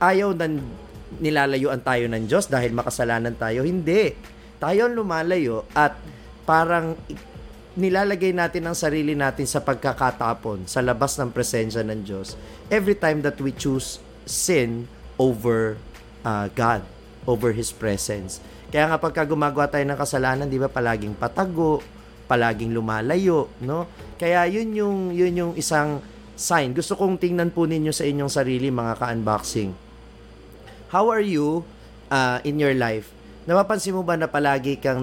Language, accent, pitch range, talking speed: Filipino, native, 115-155 Hz, 140 wpm